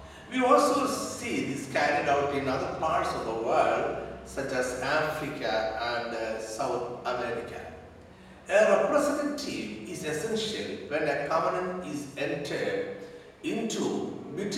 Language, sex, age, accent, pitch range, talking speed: Malayalam, male, 60-79, native, 135-195 Hz, 125 wpm